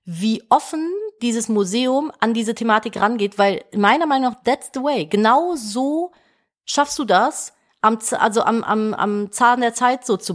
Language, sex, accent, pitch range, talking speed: German, female, German, 185-240 Hz, 160 wpm